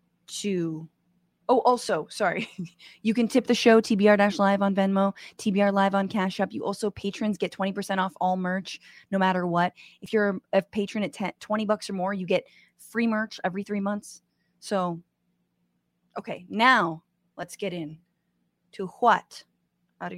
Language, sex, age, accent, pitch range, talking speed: English, female, 20-39, American, 175-220 Hz, 165 wpm